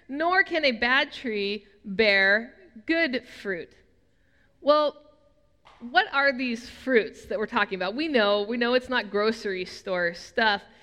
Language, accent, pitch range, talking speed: English, American, 220-285 Hz, 145 wpm